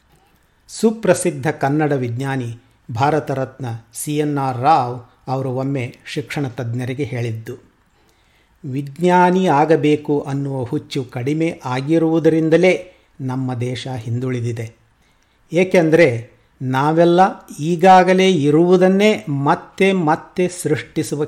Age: 50-69